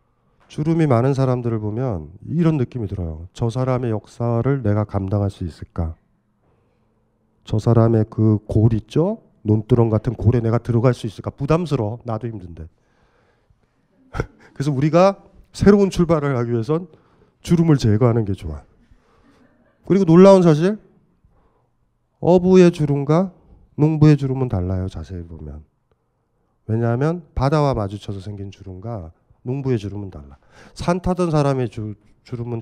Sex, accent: male, native